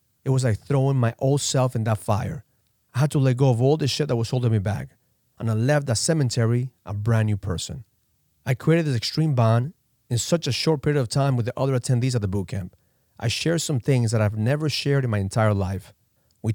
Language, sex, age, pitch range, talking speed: English, male, 40-59, 110-140 Hz, 240 wpm